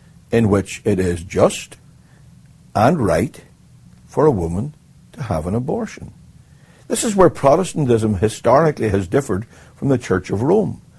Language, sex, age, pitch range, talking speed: English, male, 60-79, 100-130 Hz, 140 wpm